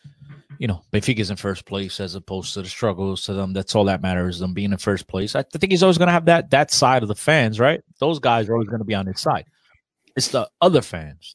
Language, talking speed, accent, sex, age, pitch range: English, 255 wpm, American, male, 30-49, 100-140 Hz